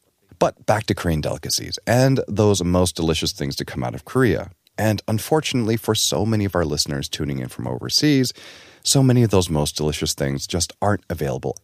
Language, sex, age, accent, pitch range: Korean, male, 30-49, American, 85-140 Hz